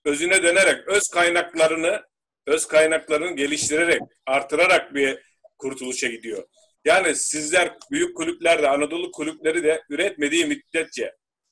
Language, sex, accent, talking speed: Turkish, male, native, 105 wpm